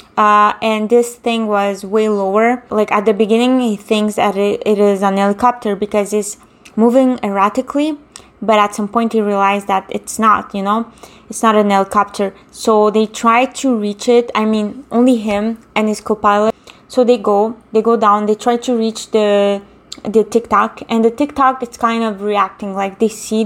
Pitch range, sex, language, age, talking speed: 205-235 Hz, female, English, 20-39, 185 wpm